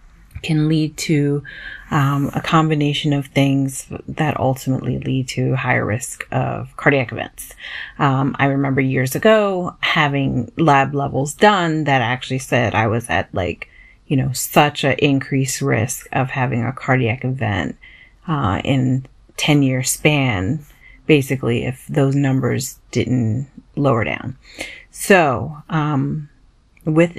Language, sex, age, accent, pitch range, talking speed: English, female, 30-49, American, 130-170 Hz, 130 wpm